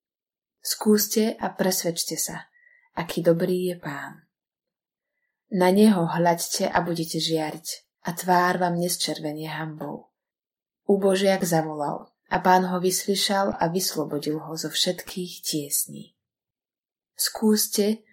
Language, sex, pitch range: Slovak, female, 170-205 Hz